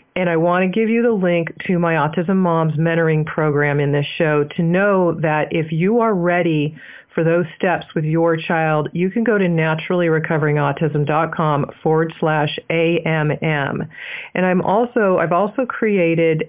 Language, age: English, 40-59